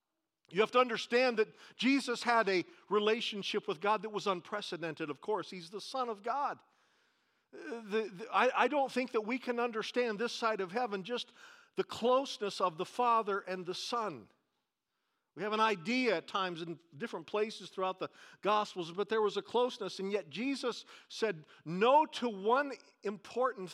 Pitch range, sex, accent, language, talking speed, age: 185-230 Hz, male, American, English, 170 wpm, 50-69